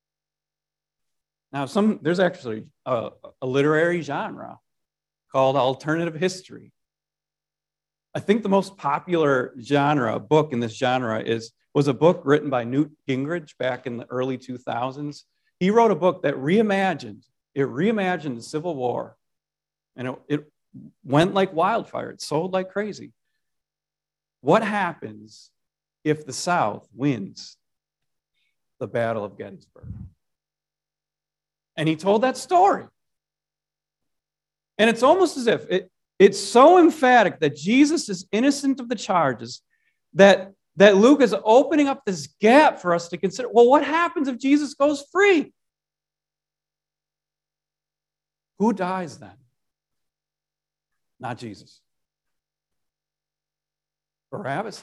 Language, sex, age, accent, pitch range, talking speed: English, male, 40-59, American, 140-200 Hz, 120 wpm